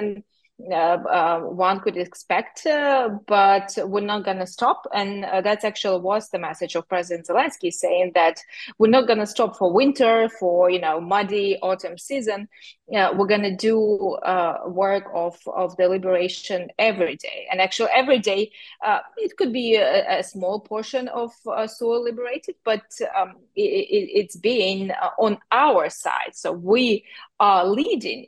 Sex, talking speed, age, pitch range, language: female, 170 wpm, 20-39, 180-225 Hz, English